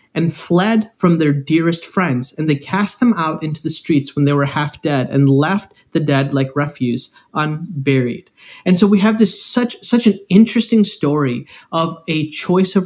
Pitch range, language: 140-190 Hz, English